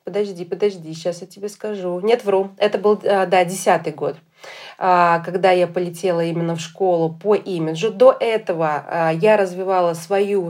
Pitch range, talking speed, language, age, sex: 180-220 Hz, 150 wpm, Russian, 30-49, female